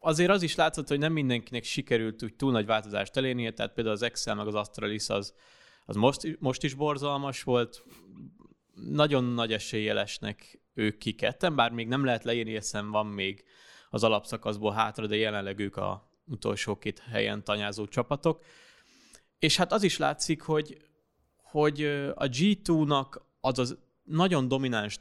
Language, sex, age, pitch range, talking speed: Hungarian, male, 20-39, 110-140 Hz, 155 wpm